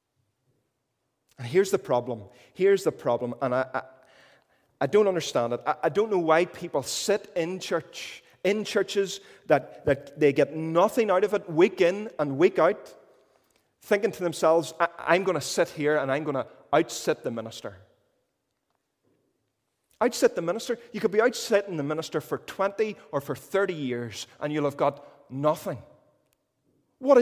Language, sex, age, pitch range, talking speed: English, male, 30-49, 135-200 Hz, 160 wpm